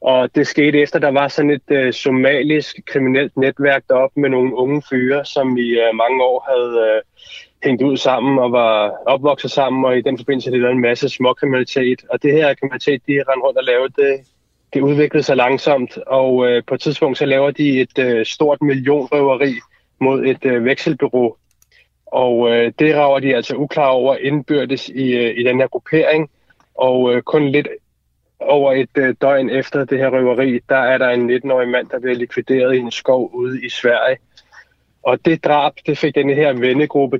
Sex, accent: male, native